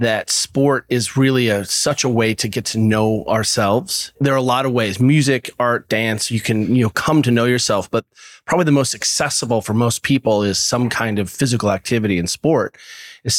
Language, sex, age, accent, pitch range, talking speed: English, male, 30-49, American, 110-130 Hz, 210 wpm